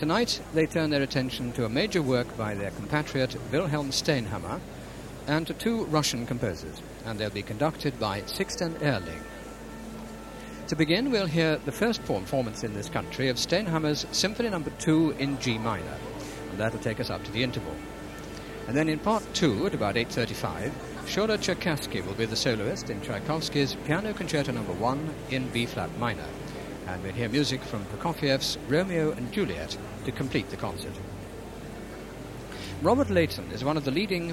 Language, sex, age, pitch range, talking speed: English, male, 60-79, 110-155 Hz, 165 wpm